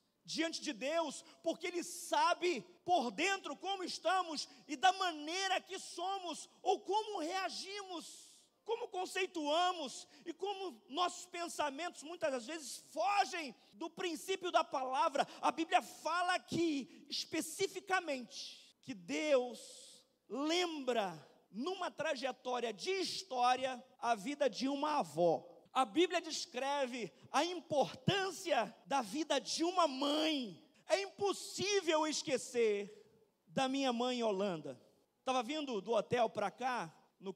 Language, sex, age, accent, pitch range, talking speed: Portuguese, male, 40-59, Brazilian, 220-330 Hz, 115 wpm